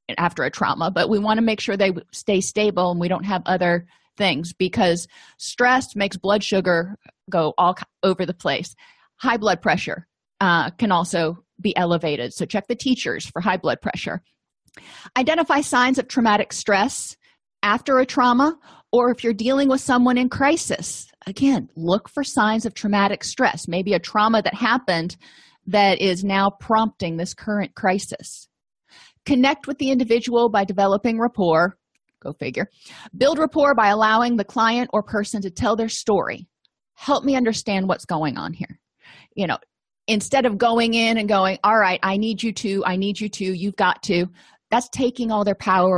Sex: female